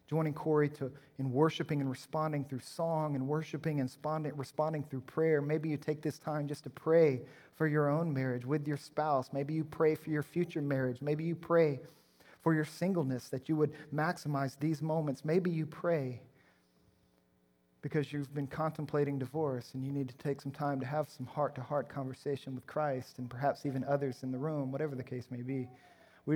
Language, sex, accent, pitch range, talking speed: English, male, American, 130-155 Hz, 190 wpm